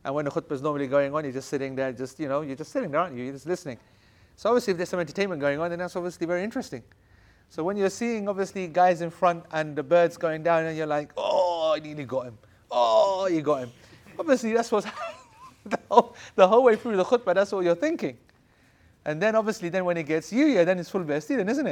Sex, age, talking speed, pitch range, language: male, 30-49, 250 wpm, 125-170 Hz, English